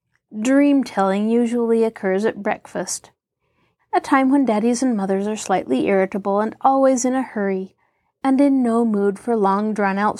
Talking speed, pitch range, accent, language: 145 wpm, 200-275 Hz, American, English